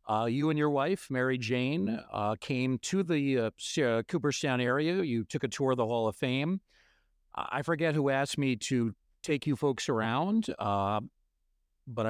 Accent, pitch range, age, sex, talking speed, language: American, 115-150 Hz, 50-69, male, 175 wpm, English